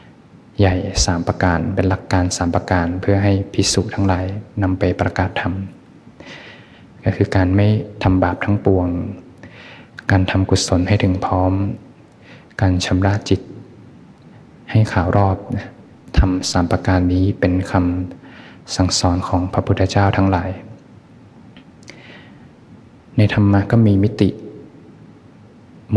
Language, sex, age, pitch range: Thai, male, 20-39, 90-100 Hz